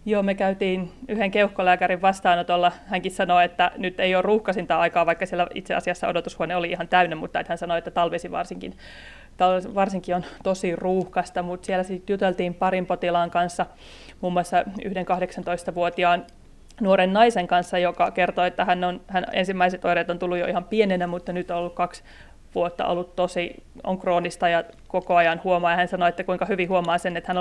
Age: 30-49